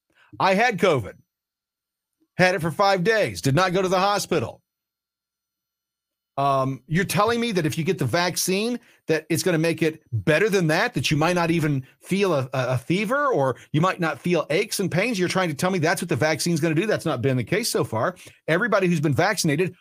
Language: English